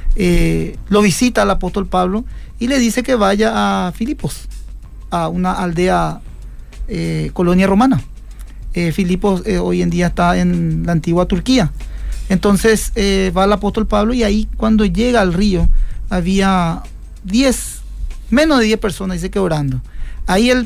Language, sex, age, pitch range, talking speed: Spanish, male, 40-59, 175-205 Hz, 155 wpm